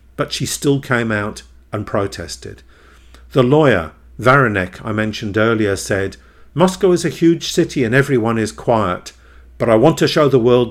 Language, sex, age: English, male, 50-69